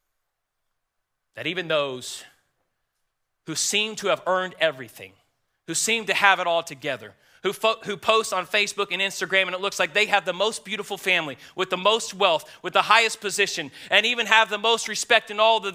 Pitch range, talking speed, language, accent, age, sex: 125-190 Hz, 195 wpm, English, American, 30-49, male